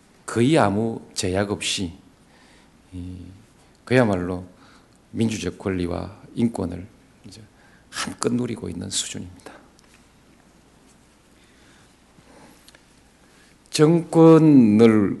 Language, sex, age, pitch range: Korean, male, 50-69, 95-115 Hz